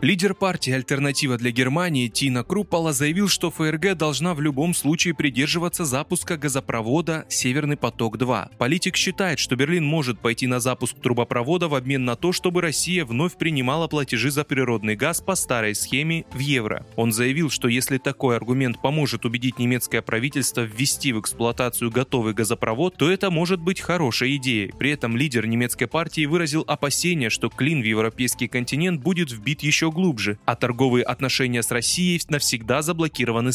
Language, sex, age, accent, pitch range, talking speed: Russian, male, 20-39, native, 120-160 Hz, 160 wpm